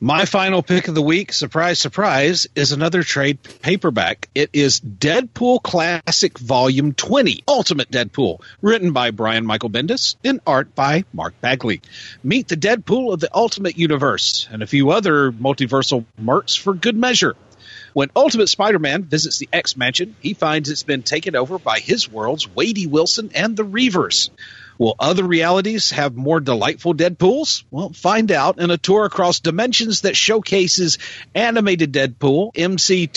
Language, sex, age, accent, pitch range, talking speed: English, male, 50-69, American, 140-210 Hz, 155 wpm